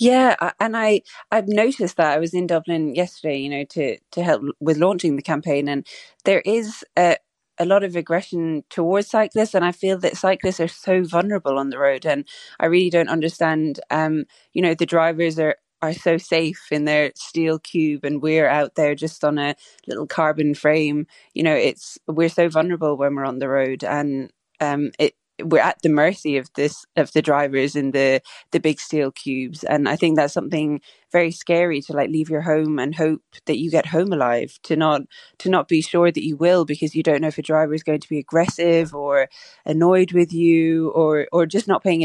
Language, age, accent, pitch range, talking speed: English, 20-39, British, 150-170 Hz, 210 wpm